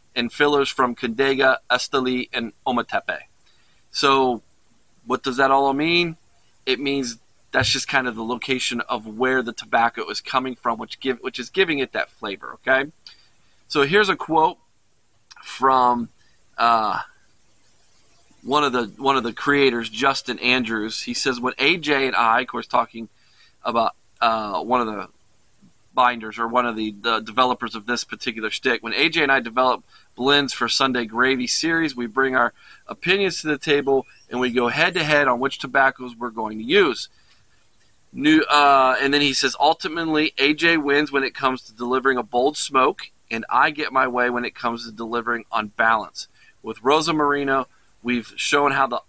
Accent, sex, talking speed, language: American, male, 175 wpm, English